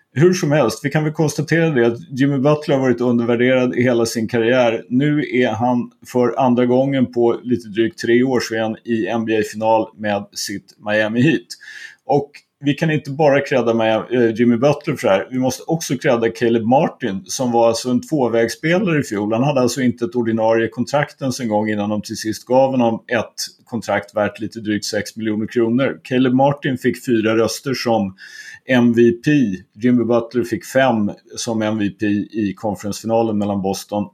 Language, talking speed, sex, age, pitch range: Swedish, 175 wpm, male, 30-49, 110-135 Hz